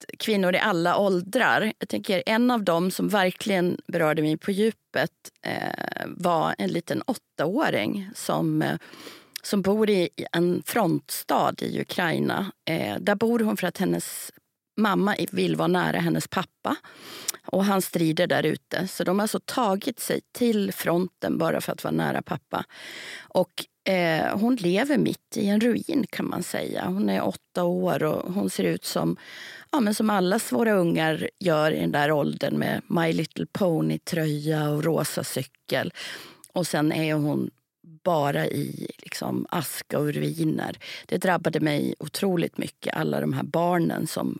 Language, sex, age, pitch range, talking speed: Swedish, female, 30-49, 155-200 Hz, 145 wpm